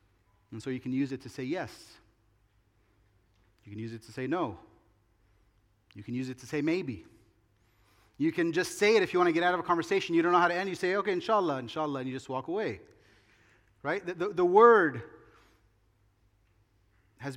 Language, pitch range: English, 110-170 Hz